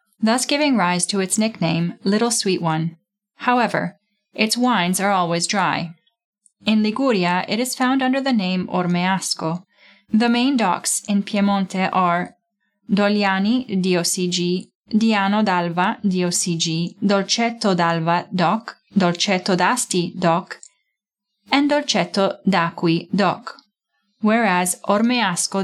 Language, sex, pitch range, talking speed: English, female, 175-215 Hz, 115 wpm